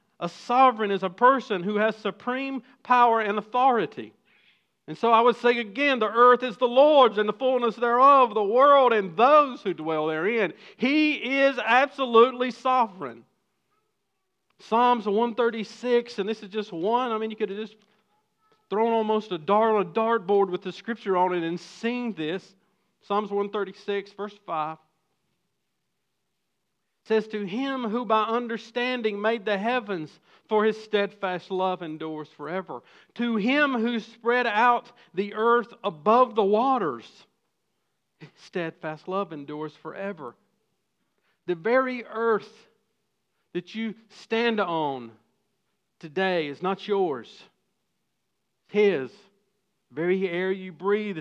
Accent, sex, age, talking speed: American, male, 50-69, 135 wpm